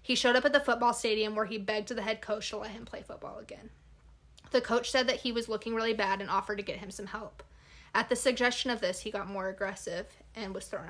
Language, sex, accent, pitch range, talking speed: English, female, American, 205-245 Hz, 265 wpm